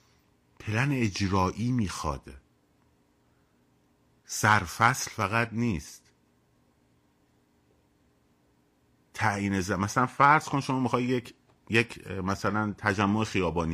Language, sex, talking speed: Persian, male, 80 wpm